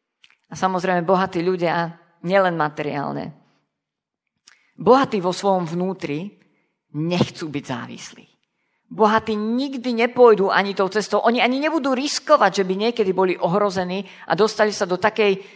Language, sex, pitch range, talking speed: Slovak, female, 180-230 Hz, 125 wpm